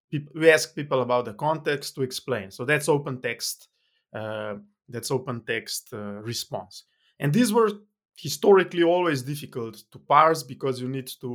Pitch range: 120-145 Hz